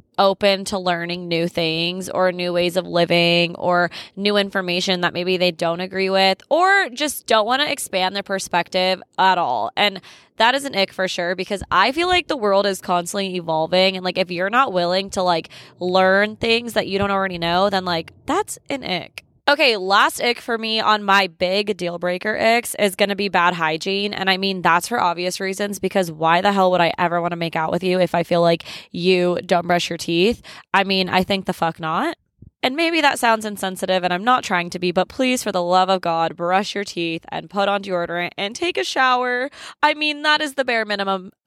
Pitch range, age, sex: 180-215 Hz, 20-39, female